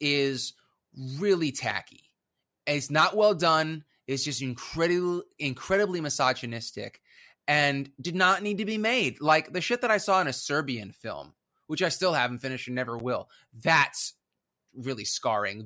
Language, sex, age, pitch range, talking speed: English, male, 30-49, 130-175 Hz, 155 wpm